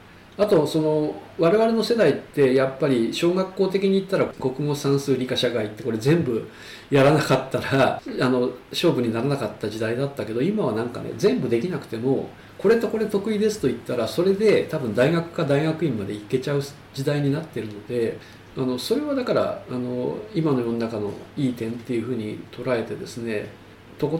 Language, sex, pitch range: Japanese, male, 115-150 Hz